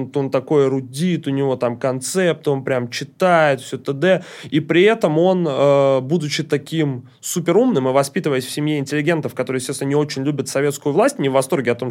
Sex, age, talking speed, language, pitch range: male, 20-39, 185 wpm, Russian, 115-140 Hz